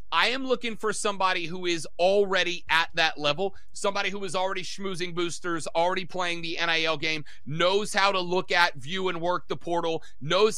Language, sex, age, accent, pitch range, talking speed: English, male, 30-49, American, 175-220 Hz, 185 wpm